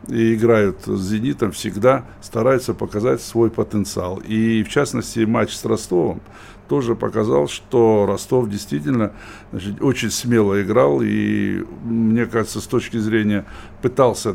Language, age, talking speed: Russian, 60-79, 130 wpm